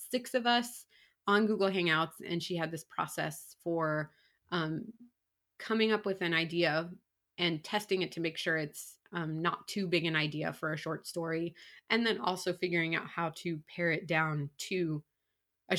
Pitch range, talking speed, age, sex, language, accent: 150-180 Hz, 180 wpm, 20-39, female, English, American